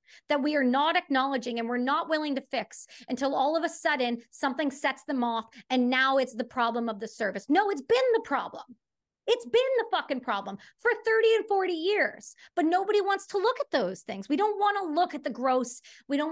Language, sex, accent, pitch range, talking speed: English, female, American, 250-335 Hz, 225 wpm